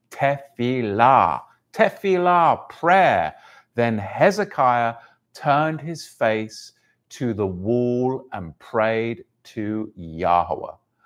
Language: English